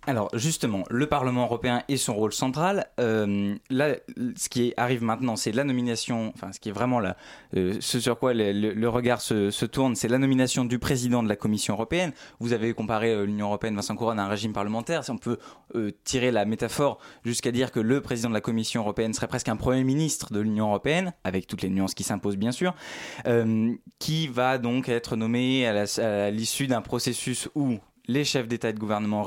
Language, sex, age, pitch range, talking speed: French, male, 20-39, 110-135 Hz, 220 wpm